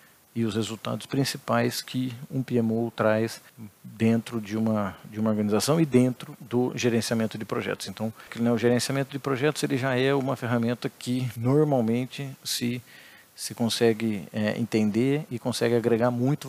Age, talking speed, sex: 40-59, 155 wpm, male